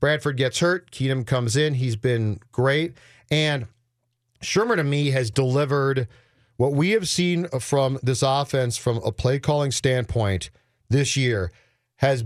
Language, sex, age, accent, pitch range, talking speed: English, male, 40-59, American, 120-145 Hz, 145 wpm